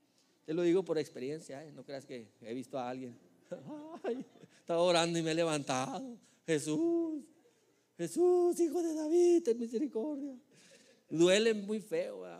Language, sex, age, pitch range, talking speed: Spanish, male, 40-59, 120-175 Hz, 150 wpm